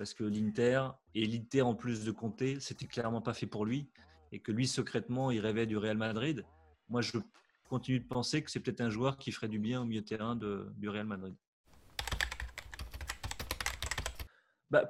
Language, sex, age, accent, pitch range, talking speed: French, male, 30-49, French, 110-130 Hz, 190 wpm